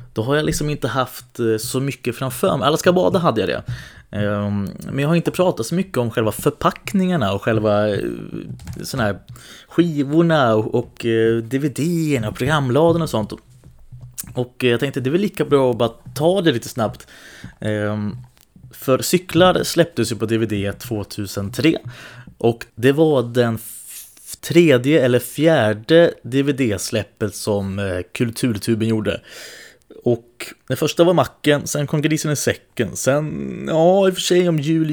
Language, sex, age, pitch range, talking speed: Swedish, male, 20-39, 110-155 Hz, 150 wpm